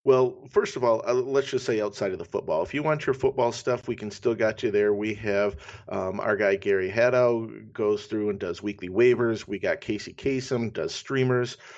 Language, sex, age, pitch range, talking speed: English, male, 50-69, 105-130 Hz, 215 wpm